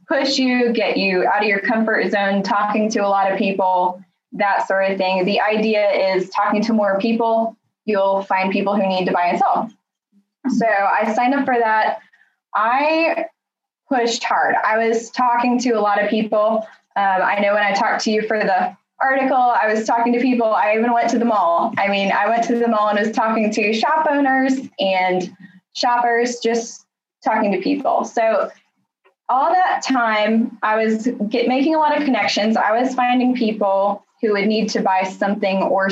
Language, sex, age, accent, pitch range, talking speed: English, female, 10-29, American, 195-235 Hz, 195 wpm